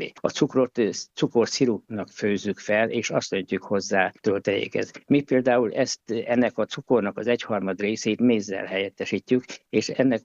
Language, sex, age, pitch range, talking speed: Hungarian, male, 60-79, 100-125 Hz, 135 wpm